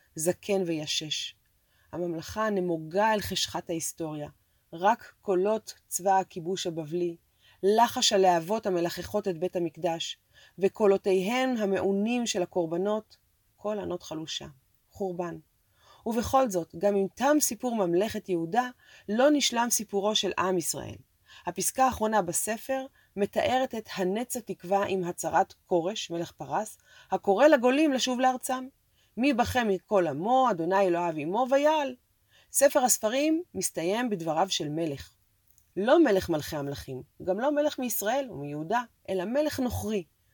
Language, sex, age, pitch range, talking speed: Hebrew, female, 30-49, 175-245 Hz, 120 wpm